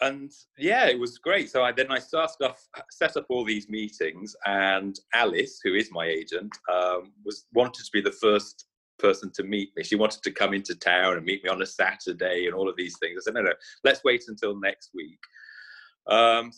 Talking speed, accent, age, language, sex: 215 wpm, British, 30-49, English, male